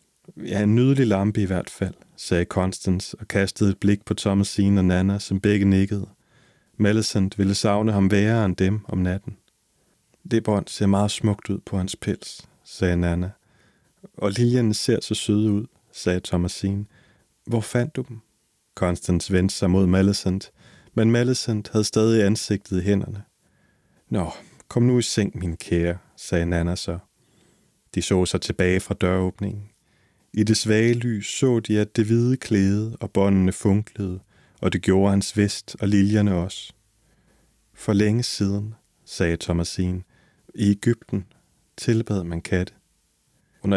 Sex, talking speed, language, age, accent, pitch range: male, 155 wpm, Danish, 30-49, native, 95-110 Hz